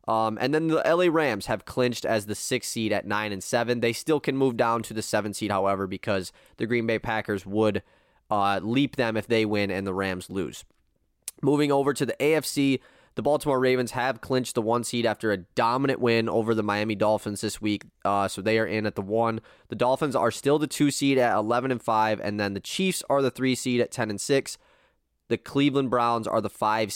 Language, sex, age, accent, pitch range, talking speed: English, male, 20-39, American, 105-135 Hz, 225 wpm